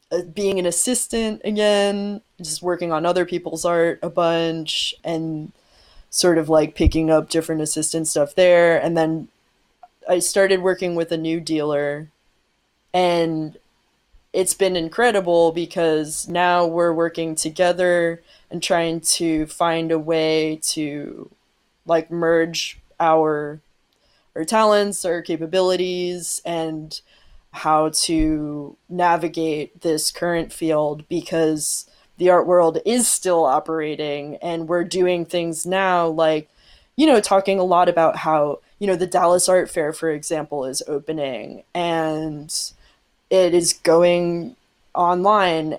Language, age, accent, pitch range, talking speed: English, 20-39, American, 160-180 Hz, 125 wpm